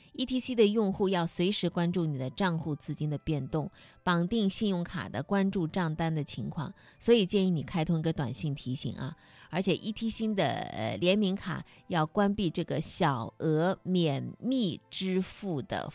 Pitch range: 160-220 Hz